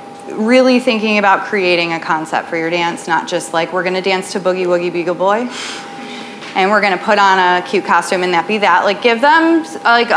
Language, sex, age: English, female, 20-39